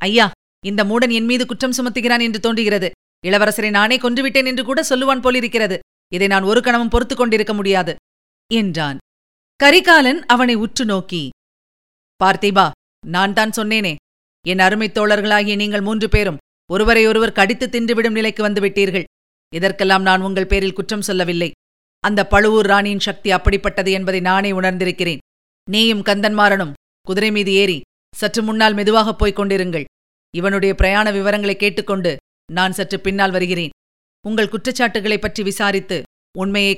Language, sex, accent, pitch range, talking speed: Tamil, female, native, 190-225 Hz, 125 wpm